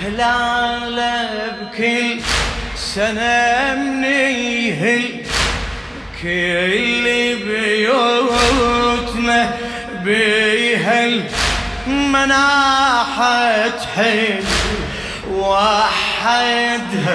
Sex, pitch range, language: male, 210-240 Hz, Arabic